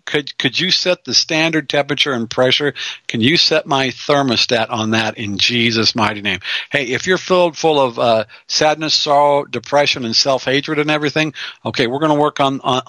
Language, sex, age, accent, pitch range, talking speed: English, male, 50-69, American, 125-160 Hz, 185 wpm